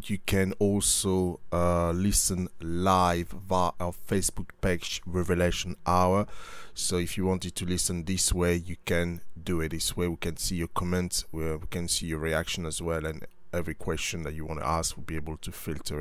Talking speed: 190 wpm